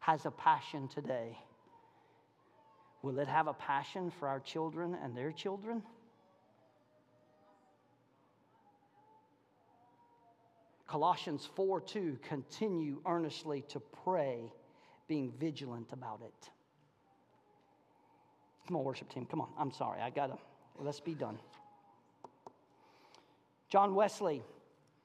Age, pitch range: 40-59, 145-205 Hz